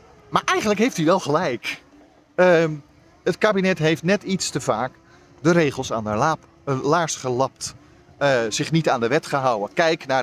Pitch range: 125-170 Hz